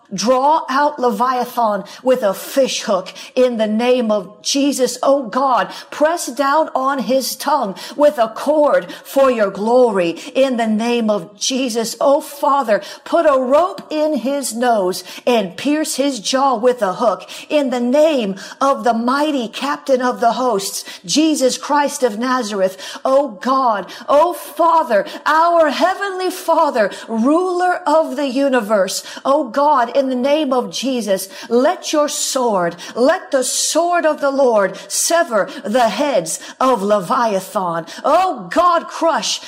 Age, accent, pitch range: 50-69, American, 235-295 Hz